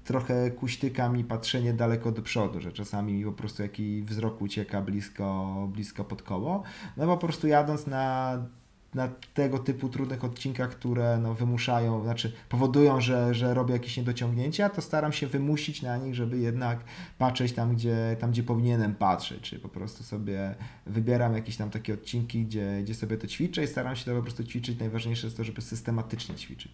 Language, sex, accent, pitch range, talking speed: Polish, male, native, 100-125 Hz, 180 wpm